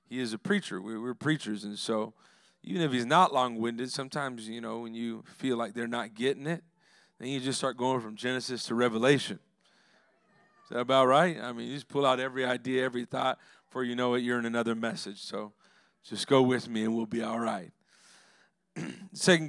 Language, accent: English, American